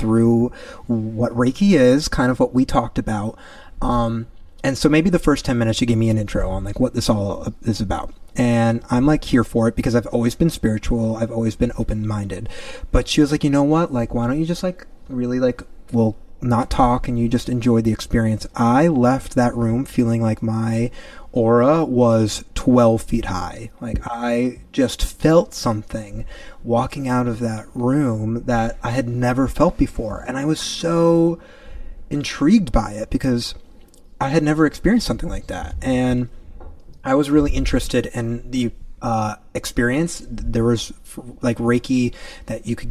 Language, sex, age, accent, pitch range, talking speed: English, male, 30-49, American, 110-130 Hz, 180 wpm